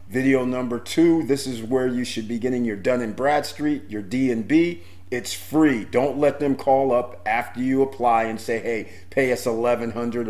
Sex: male